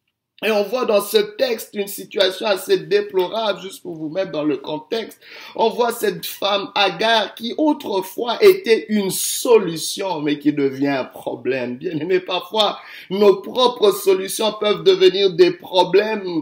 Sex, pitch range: male, 150-210 Hz